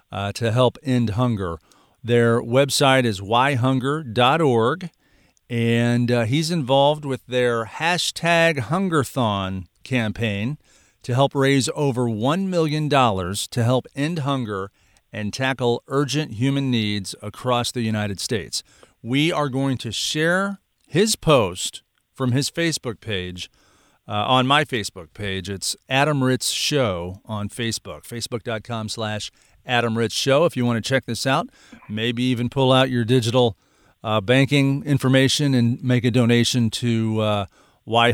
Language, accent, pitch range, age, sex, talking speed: English, American, 110-140 Hz, 50-69, male, 140 wpm